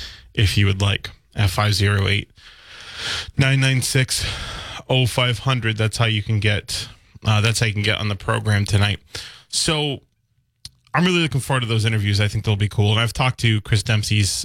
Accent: American